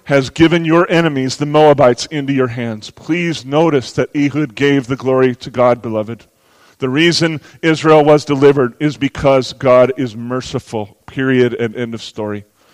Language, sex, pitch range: English, male, 125-150 Hz